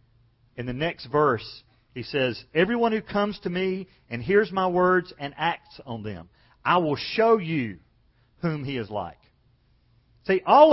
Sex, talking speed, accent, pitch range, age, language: male, 160 wpm, American, 125-195 Hz, 40-59, English